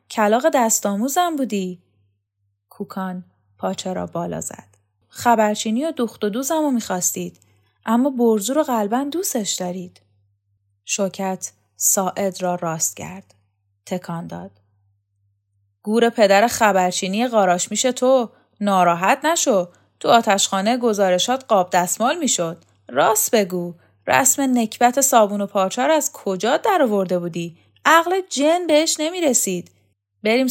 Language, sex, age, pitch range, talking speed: Persian, female, 10-29, 180-275 Hz, 120 wpm